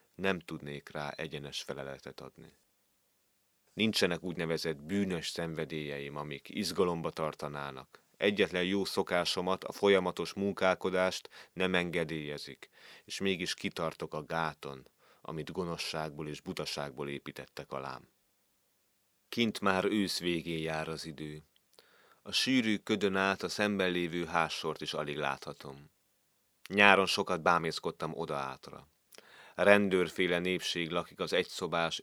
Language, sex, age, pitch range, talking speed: Hungarian, male, 30-49, 75-95 Hz, 110 wpm